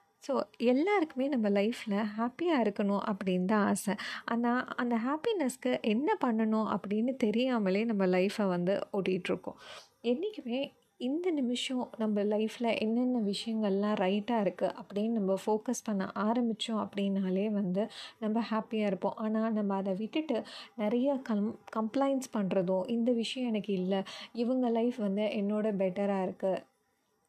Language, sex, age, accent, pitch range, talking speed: Tamil, female, 30-49, native, 200-235 Hz, 125 wpm